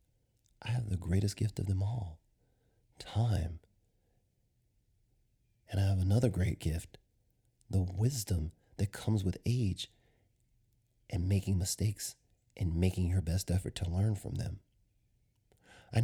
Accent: American